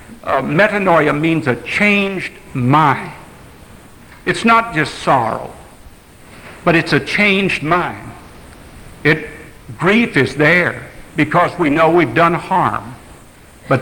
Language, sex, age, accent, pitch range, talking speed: English, male, 60-79, American, 135-175 Hz, 110 wpm